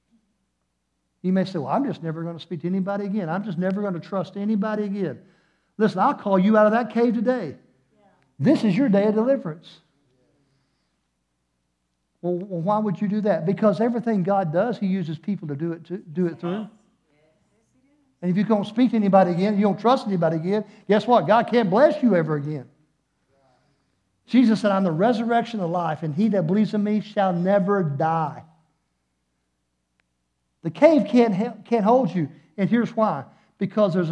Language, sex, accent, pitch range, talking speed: English, male, American, 155-205 Hz, 180 wpm